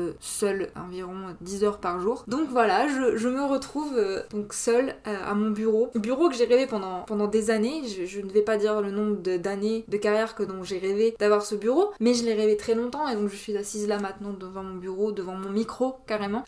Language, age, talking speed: French, 20-39, 245 wpm